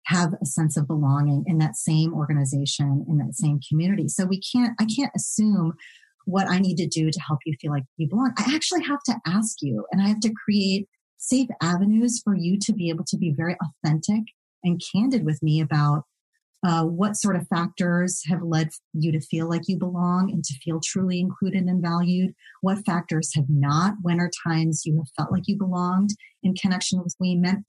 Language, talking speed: English, 210 wpm